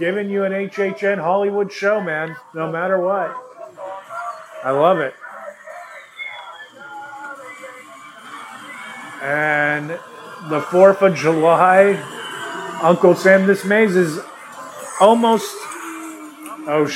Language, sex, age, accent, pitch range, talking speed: English, male, 30-49, American, 165-205 Hz, 90 wpm